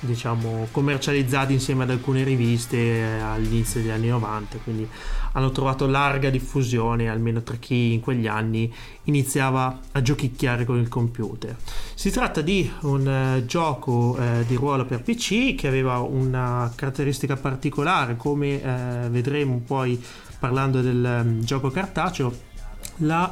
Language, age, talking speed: Italian, 30-49, 130 wpm